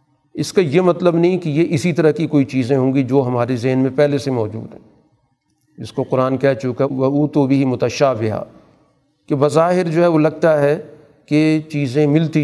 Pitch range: 125-150 Hz